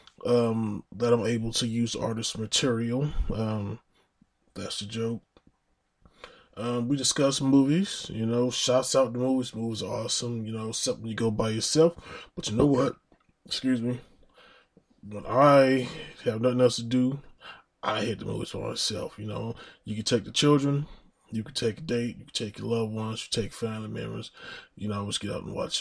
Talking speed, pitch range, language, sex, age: 190 wpm, 110-130 Hz, English, male, 20-39